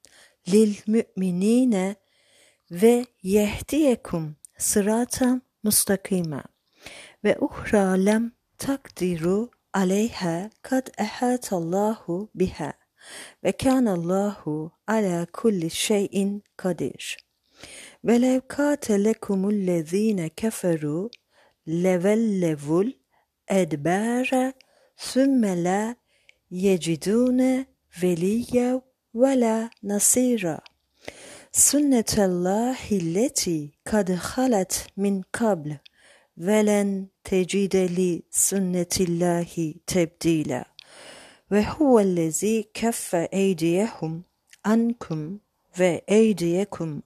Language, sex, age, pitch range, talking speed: Turkish, female, 50-69, 180-225 Hz, 65 wpm